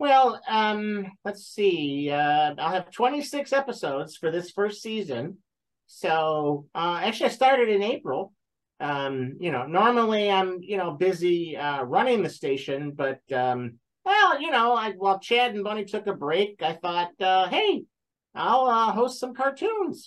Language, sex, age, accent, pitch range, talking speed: English, male, 50-69, American, 150-235 Hz, 160 wpm